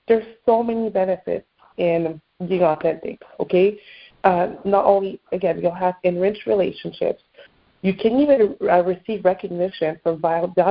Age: 30-49